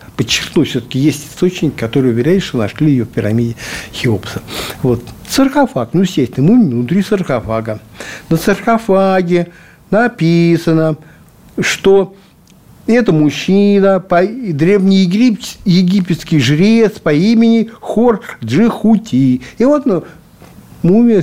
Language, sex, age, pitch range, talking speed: Russian, male, 60-79, 125-190 Hz, 105 wpm